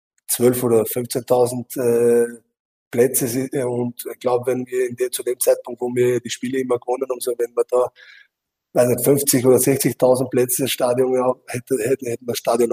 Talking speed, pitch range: 190 wpm, 120-135 Hz